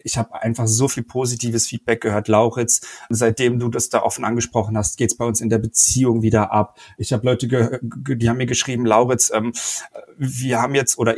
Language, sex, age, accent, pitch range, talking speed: German, male, 40-59, German, 115-130 Hz, 215 wpm